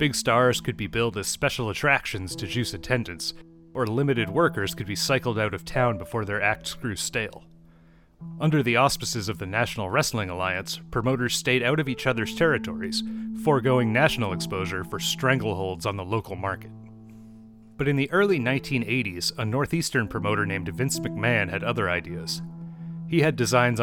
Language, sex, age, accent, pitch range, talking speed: English, male, 30-49, American, 105-140 Hz, 165 wpm